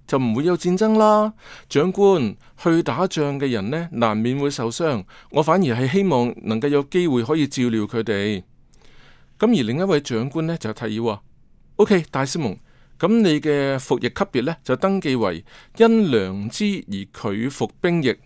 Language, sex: Chinese, male